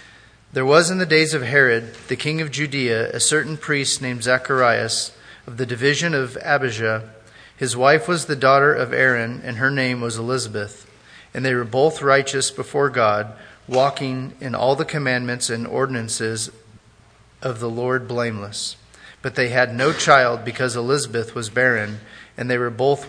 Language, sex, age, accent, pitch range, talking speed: English, male, 30-49, American, 115-140 Hz, 165 wpm